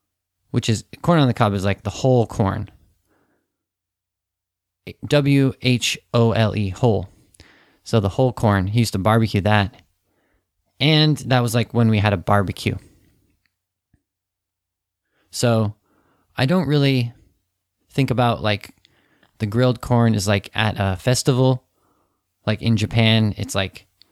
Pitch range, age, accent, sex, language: 95-120 Hz, 20-39, American, male, Japanese